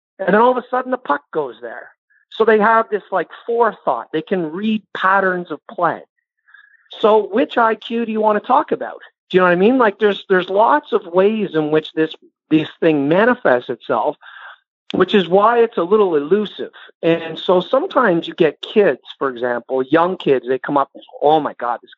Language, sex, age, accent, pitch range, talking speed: English, male, 50-69, American, 160-230 Hz, 200 wpm